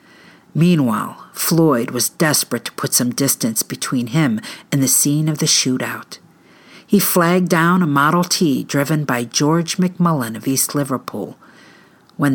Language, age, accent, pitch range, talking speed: English, 50-69, American, 135-185 Hz, 145 wpm